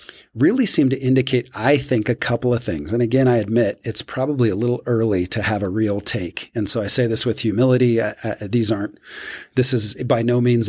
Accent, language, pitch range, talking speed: American, English, 105-125 Hz, 225 wpm